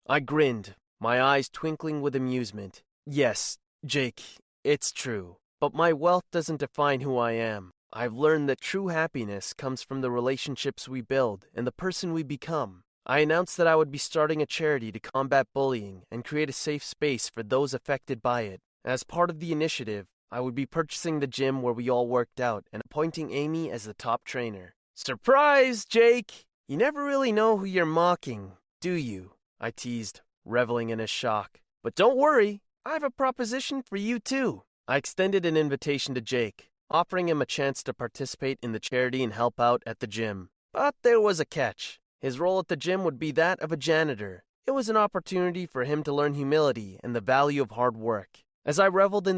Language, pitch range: English, 120-170 Hz